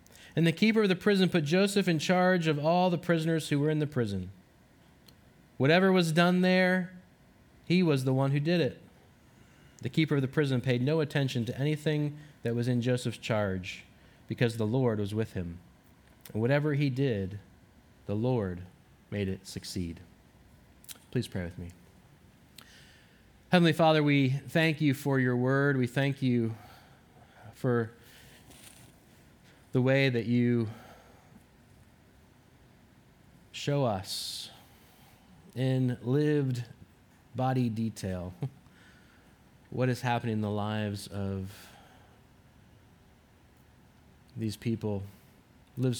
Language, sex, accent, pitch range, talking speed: English, male, American, 100-140 Hz, 125 wpm